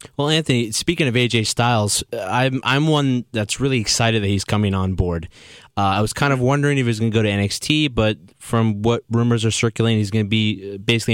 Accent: American